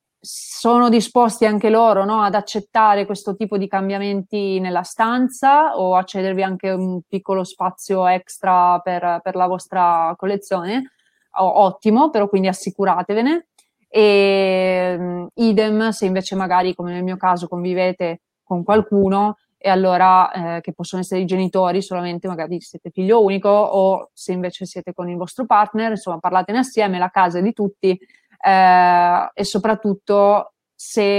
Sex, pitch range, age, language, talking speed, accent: female, 180-205 Hz, 20-39, Italian, 145 wpm, native